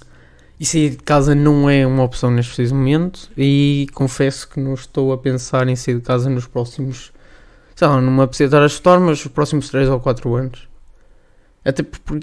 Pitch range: 130-145 Hz